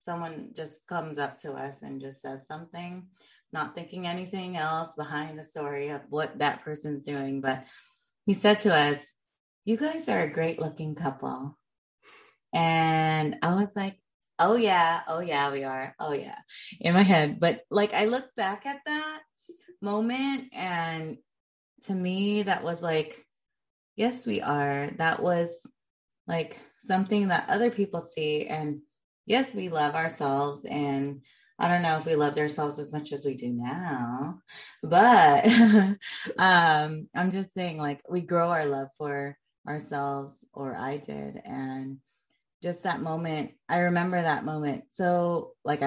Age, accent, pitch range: 20-39, American, 145-185 Hz